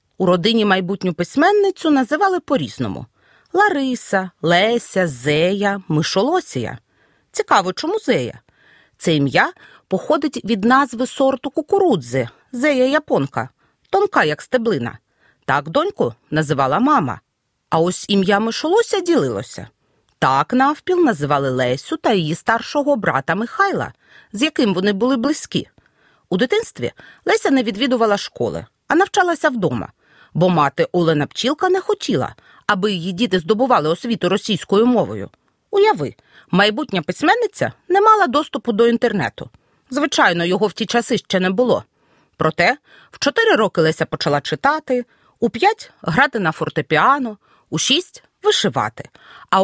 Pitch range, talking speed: 180-305 Hz, 125 wpm